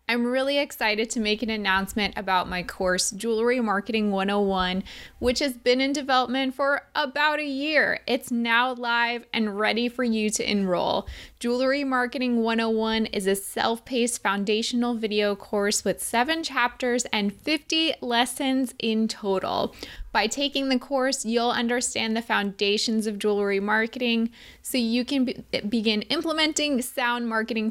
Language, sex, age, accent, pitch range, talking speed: English, female, 20-39, American, 205-250 Hz, 145 wpm